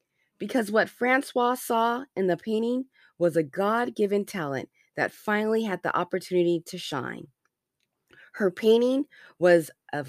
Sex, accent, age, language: female, American, 30-49, English